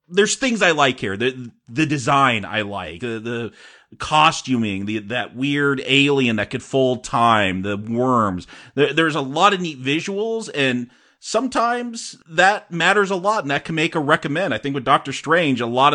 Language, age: English, 30-49